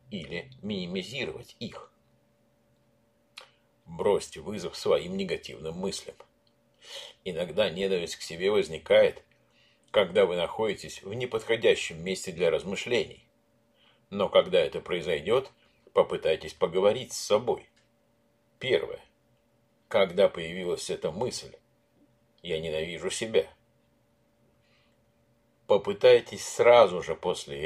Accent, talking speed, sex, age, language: native, 90 wpm, male, 50-69, Russian